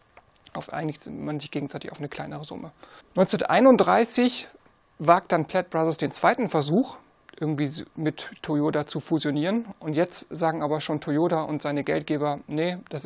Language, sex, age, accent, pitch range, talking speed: German, male, 40-59, German, 150-190 Hz, 150 wpm